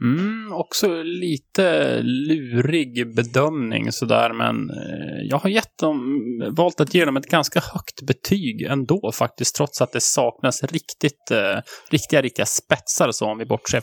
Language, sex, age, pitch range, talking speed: English, male, 20-39, 115-145 Hz, 140 wpm